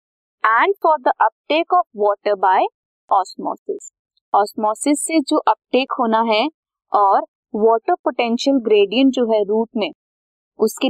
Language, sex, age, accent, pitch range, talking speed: Hindi, female, 20-39, native, 220-330 Hz, 125 wpm